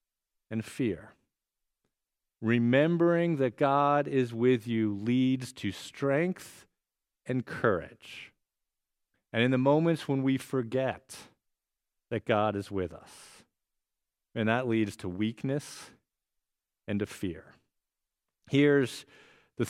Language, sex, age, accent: English, male, 50-69, American